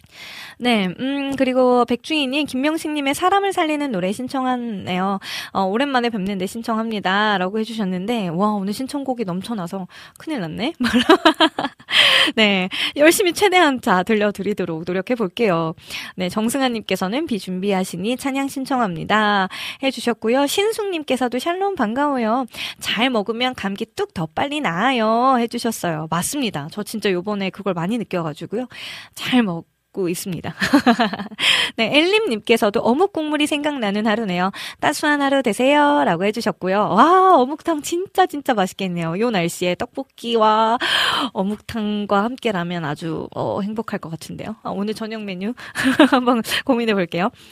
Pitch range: 205-285 Hz